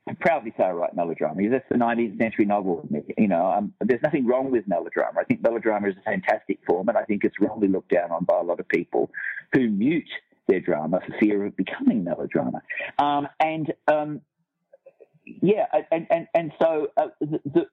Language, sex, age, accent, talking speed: English, male, 50-69, Australian, 195 wpm